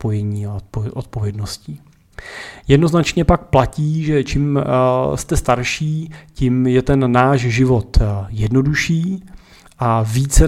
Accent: native